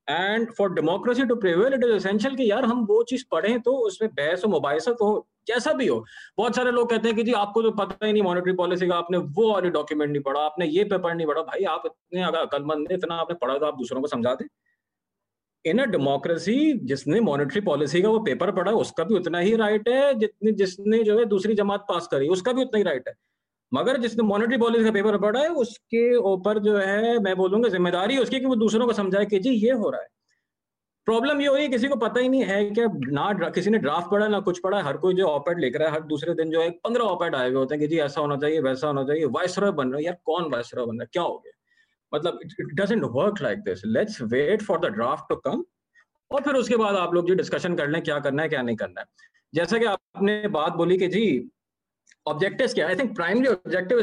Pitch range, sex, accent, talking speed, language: 165-230 Hz, male, Indian, 140 wpm, English